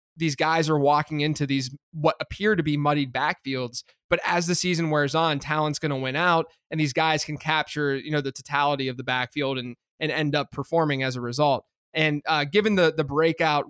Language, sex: English, male